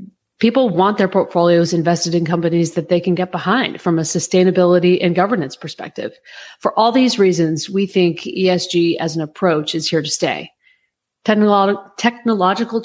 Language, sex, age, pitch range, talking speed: English, female, 40-59, 160-190 Hz, 155 wpm